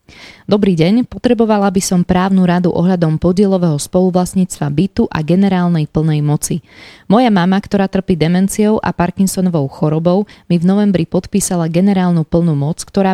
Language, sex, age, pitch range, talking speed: Slovak, female, 20-39, 165-195 Hz, 140 wpm